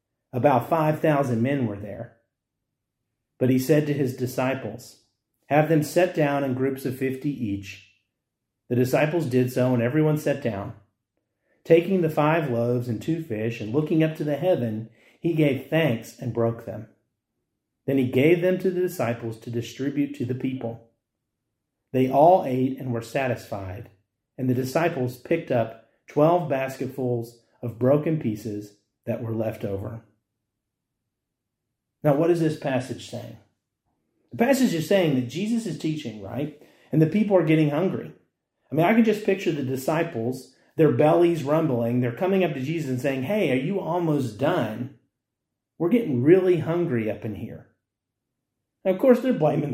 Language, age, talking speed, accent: English, 40-59, 165 wpm, American